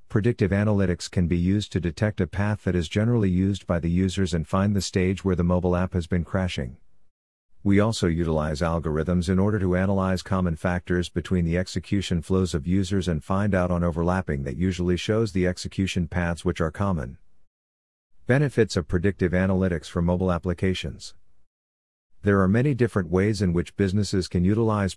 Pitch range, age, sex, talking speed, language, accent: 85-100 Hz, 50-69, male, 180 wpm, English, American